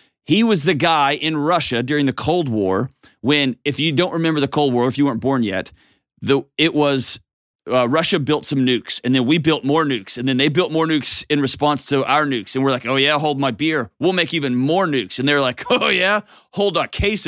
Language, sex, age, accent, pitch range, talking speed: English, male, 40-59, American, 115-150 Hz, 235 wpm